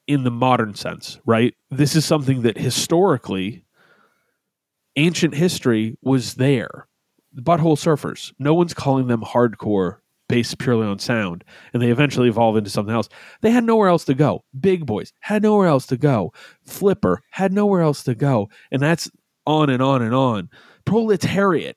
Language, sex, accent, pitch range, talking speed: English, male, American, 120-155 Hz, 165 wpm